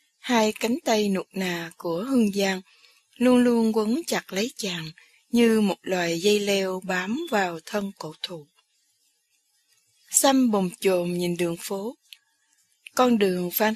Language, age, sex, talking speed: Vietnamese, 20-39, female, 145 wpm